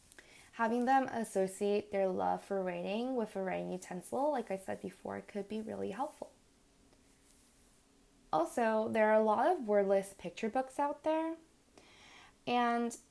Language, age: English, 10-29